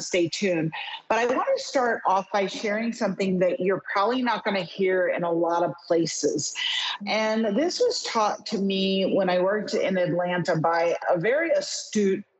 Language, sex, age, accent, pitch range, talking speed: English, female, 40-59, American, 180-225 Hz, 185 wpm